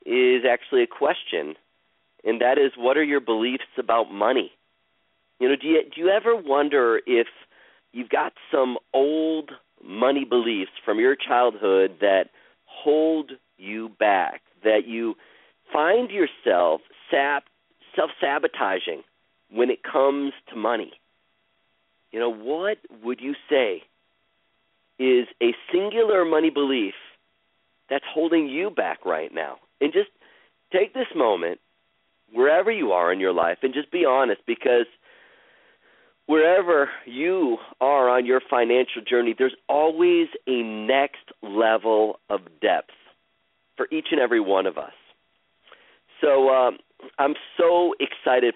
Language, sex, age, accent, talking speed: English, male, 40-59, American, 130 wpm